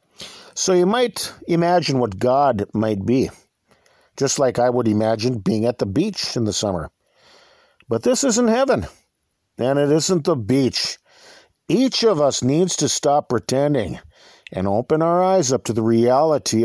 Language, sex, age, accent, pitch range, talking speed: English, male, 50-69, American, 120-190 Hz, 160 wpm